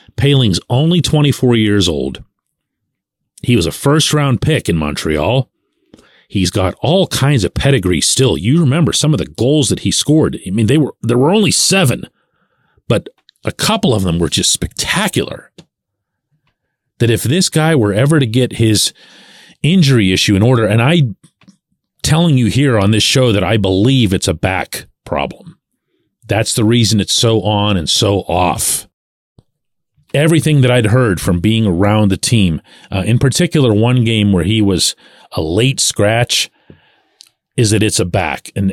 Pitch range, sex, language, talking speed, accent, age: 100-140 Hz, male, English, 165 wpm, American, 40-59